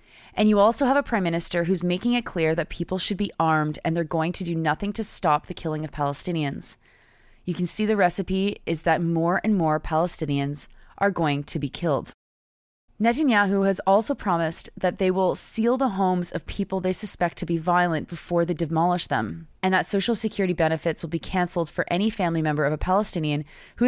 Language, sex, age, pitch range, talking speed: English, female, 20-39, 150-190 Hz, 205 wpm